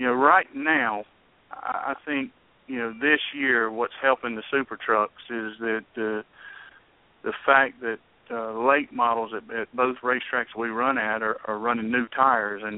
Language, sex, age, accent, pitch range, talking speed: English, male, 50-69, American, 115-135 Hz, 175 wpm